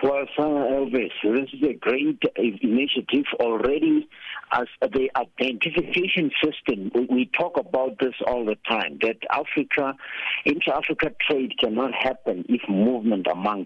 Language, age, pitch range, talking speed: English, 60-79, 100-135 Hz, 125 wpm